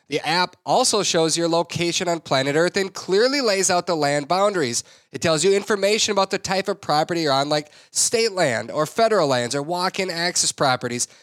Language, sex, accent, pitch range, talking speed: English, male, American, 150-205 Hz, 200 wpm